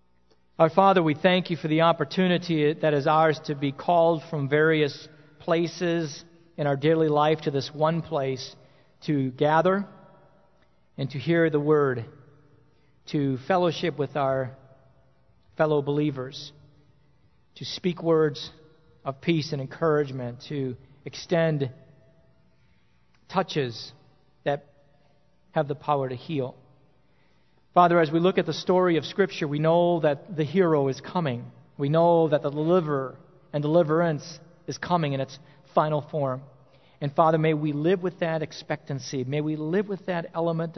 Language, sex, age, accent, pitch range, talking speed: English, male, 40-59, American, 135-165 Hz, 145 wpm